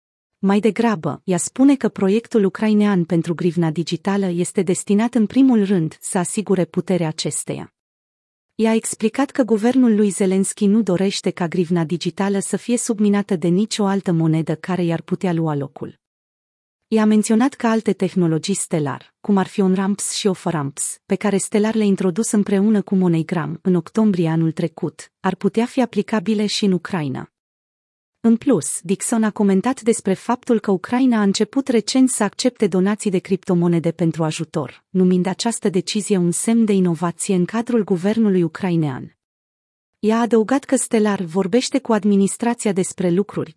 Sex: female